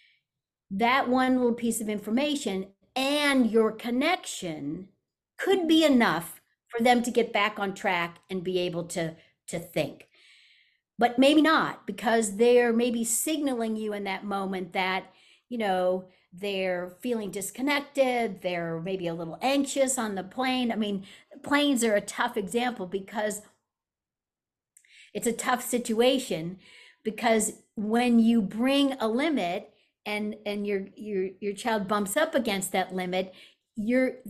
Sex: female